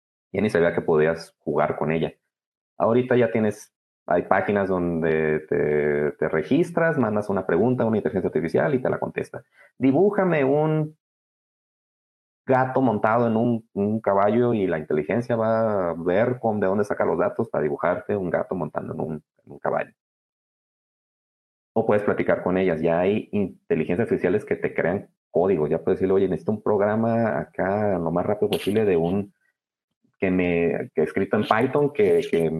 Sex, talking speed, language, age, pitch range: male, 170 wpm, Spanish, 30-49, 80-115 Hz